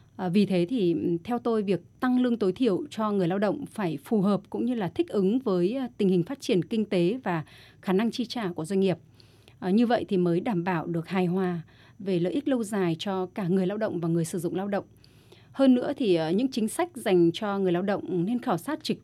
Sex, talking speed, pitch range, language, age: female, 245 wpm, 170-235 Hz, Vietnamese, 30-49